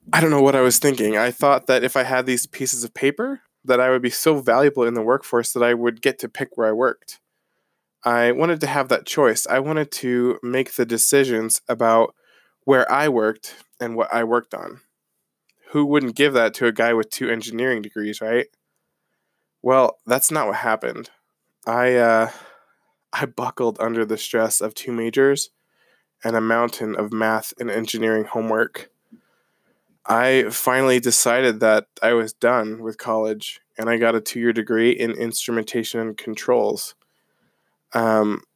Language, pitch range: English, 115-130 Hz